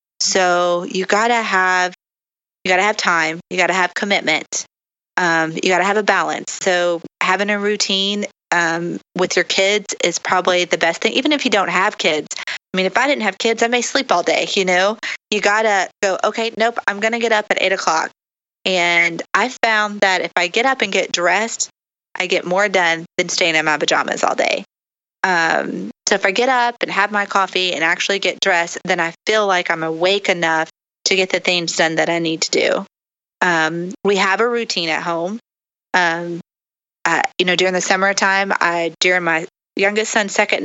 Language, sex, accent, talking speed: English, female, American, 210 wpm